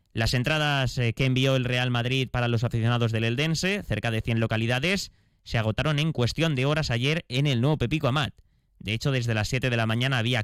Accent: Spanish